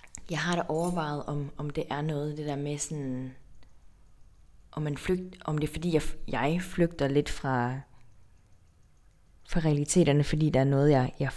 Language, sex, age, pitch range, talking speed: Danish, female, 20-39, 130-160 Hz, 175 wpm